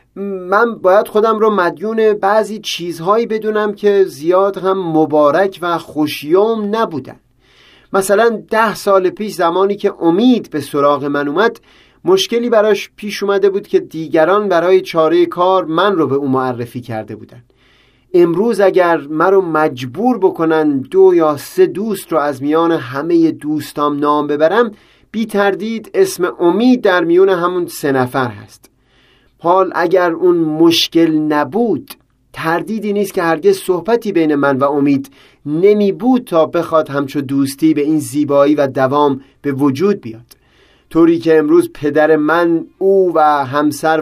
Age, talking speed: 30-49, 145 wpm